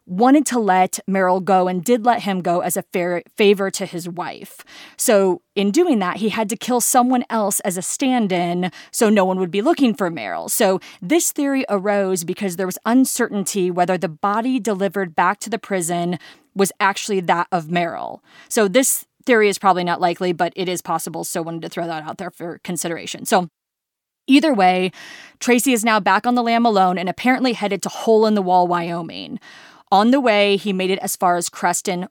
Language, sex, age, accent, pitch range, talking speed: English, female, 20-39, American, 180-220 Hz, 205 wpm